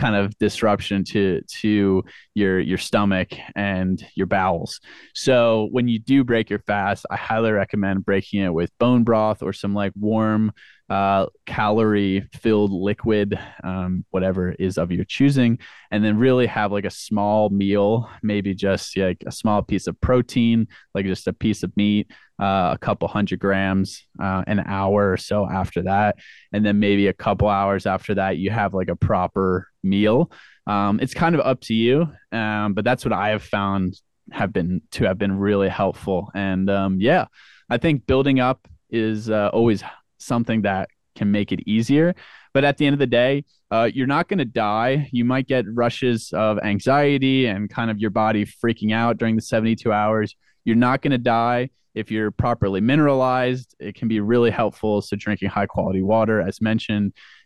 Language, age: English, 20-39